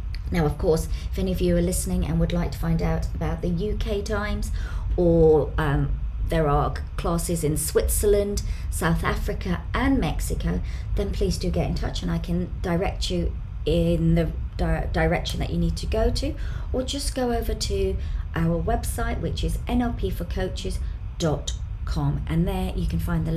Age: 40-59